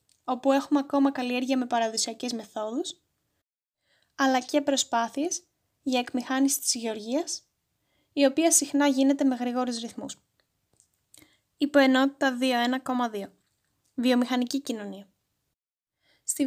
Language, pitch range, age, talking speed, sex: Greek, 245-280 Hz, 10-29, 95 wpm, female